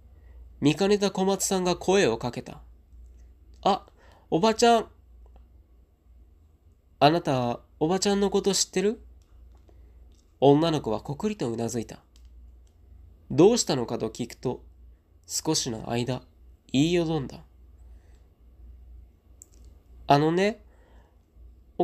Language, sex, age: Japanese, male, 20-39